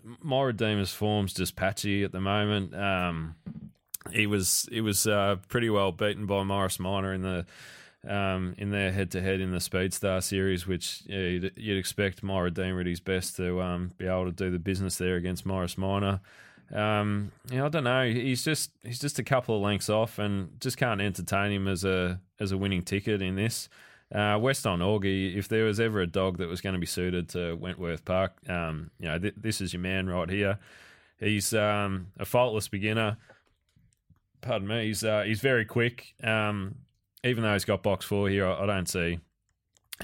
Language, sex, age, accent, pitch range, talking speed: English, male, 20-39, Australian, 90-105 Hz, 205 wpm